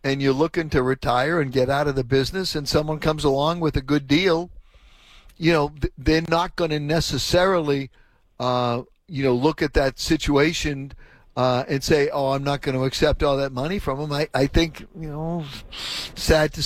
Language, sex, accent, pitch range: English, male, American, 130-160 Hz